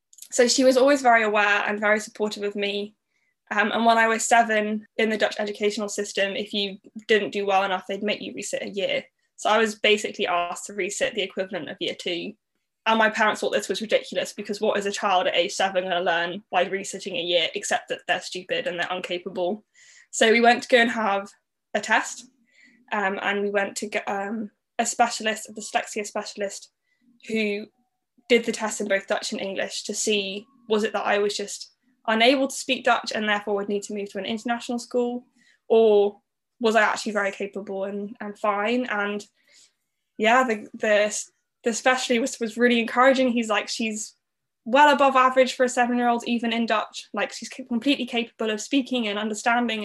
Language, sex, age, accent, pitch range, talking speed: English, female, 10-29, British, 205-240 Hz, 200 wpm